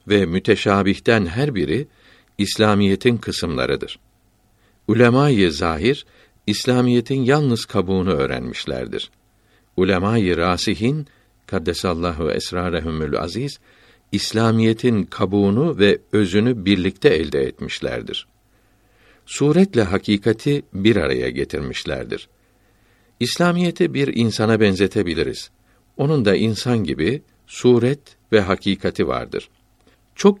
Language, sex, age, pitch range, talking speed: Turkish, male, 60-79, 100-120 Hz, 85 wpm